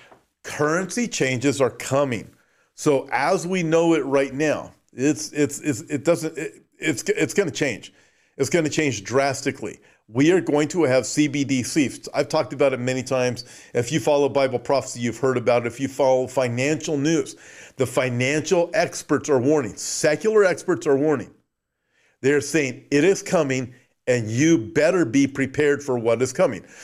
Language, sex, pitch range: English, male, 130-155 Hz